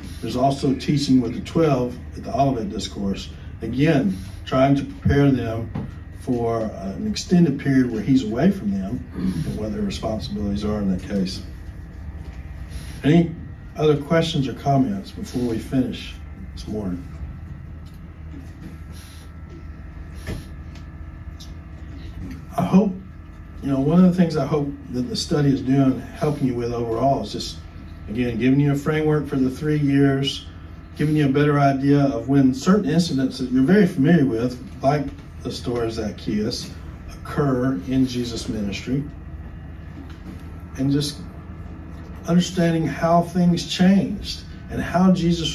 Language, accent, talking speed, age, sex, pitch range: English, American, 135 wpm, 50-69, male, 85-140 Hz